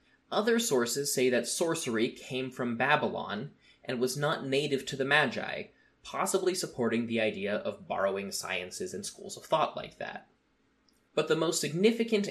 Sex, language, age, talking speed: male, English, 20-39, 155 wpm